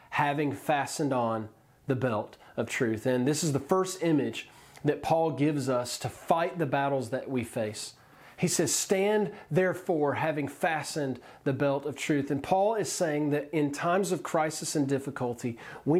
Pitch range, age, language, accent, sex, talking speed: 135-170 Hz, 40-59, English, American, male, 175 wpm